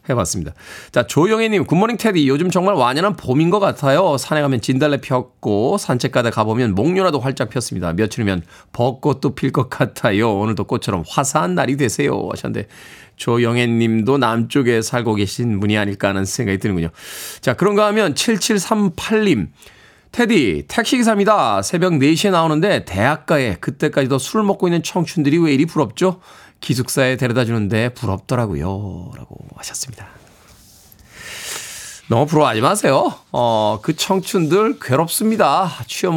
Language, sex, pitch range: Korean, male, 115-160 Hz